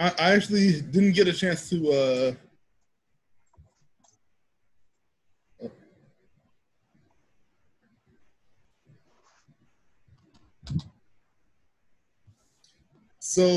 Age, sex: 20-39, male